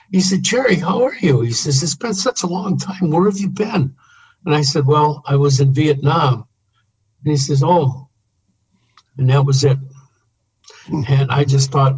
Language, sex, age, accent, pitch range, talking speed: English, male, 60-79, American, 115-145 Hz, 190 wpm